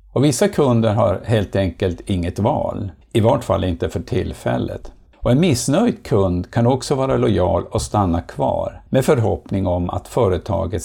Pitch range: 90-120 Hz